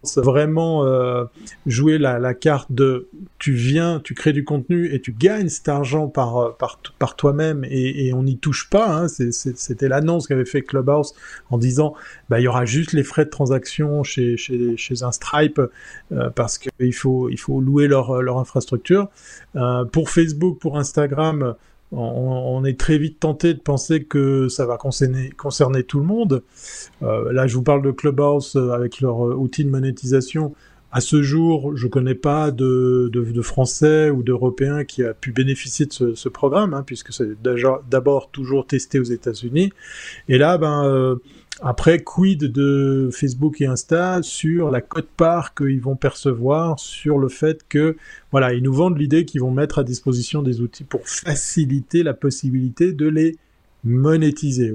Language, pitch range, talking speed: French, 125-155 Hz, 180 wpm